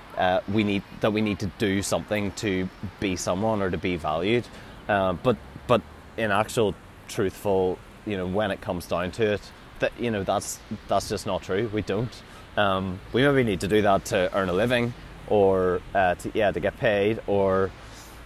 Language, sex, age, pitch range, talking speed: English, male, 30-49, 90-110 Hz, 195 wpm